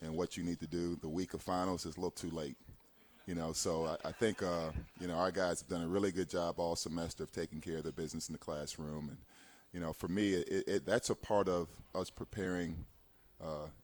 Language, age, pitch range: English, 30-49, 80-90 Hz